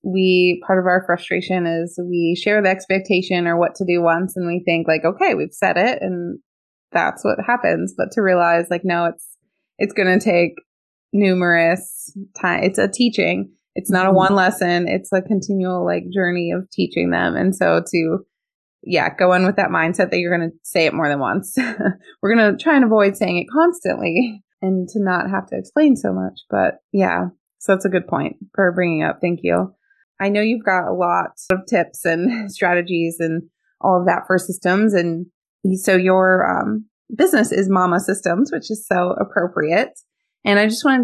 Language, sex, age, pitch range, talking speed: English, female, 20-39, 175-200 Hz, 195 wpm